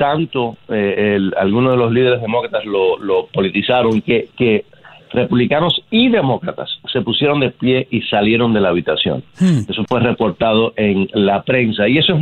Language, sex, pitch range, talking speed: Spanish, male, 110-140 Hz, 160 wpm